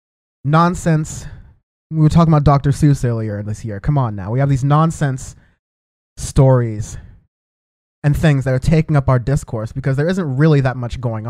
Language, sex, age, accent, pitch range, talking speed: English, male, 20-39, American, 125-150 Hz, 175 wpm